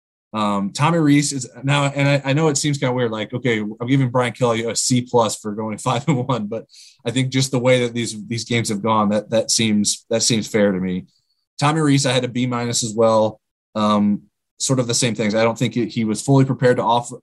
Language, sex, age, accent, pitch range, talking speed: English, male, 20-39, American, 110-130 Hz, 250 wpm